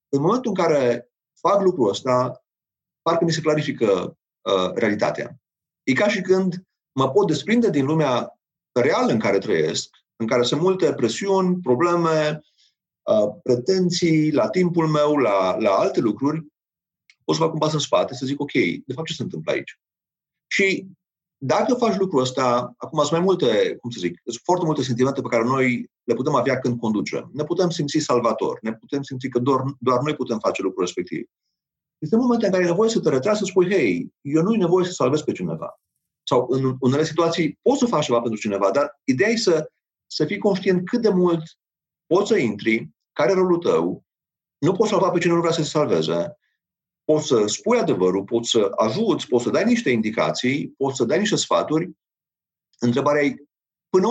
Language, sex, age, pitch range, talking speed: Romanian, male, 40-59, 130-185 Hz, 185 wpm